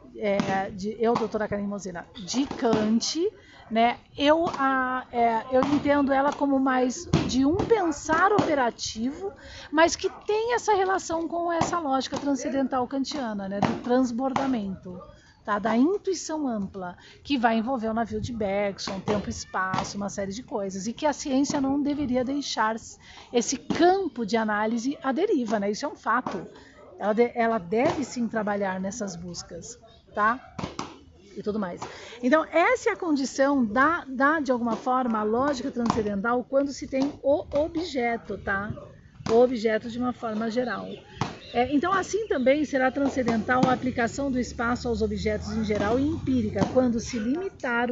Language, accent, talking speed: Portuguese, Brazilian, 155 wpm